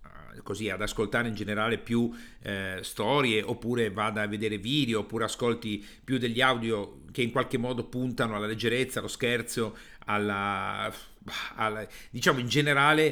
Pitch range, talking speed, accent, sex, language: 110-145 Hz, 145 wpm, native, male, Italian